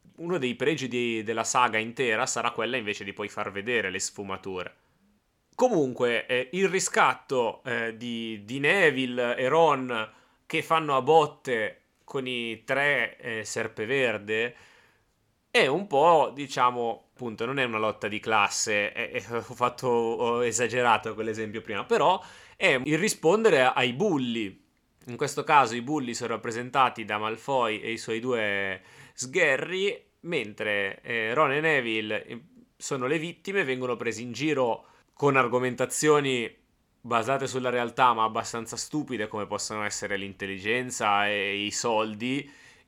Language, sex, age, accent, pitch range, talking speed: Italian, male, 30-49, native, 110-135 Hz, 140 wpm